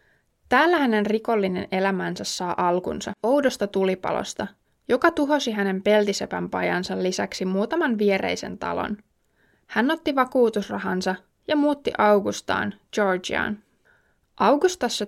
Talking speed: 100 wpm